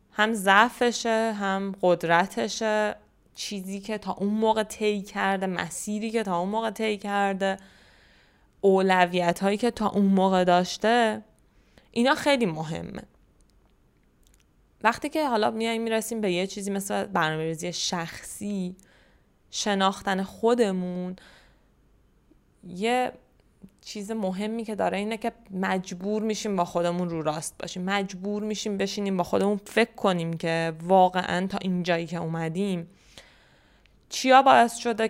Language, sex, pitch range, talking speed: Persian, female, 185-215 Hz, 120 wpm